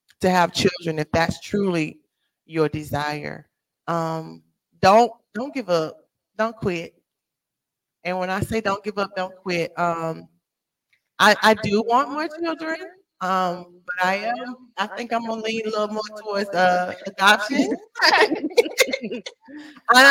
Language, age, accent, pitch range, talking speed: English, 20-39, American, 160-235 Hz, 140 wpm